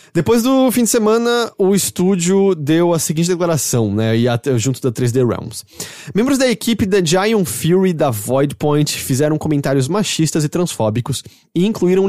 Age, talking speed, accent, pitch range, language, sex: 20-39, 155 wpm, Brazilian, 125-175 Hz, English, male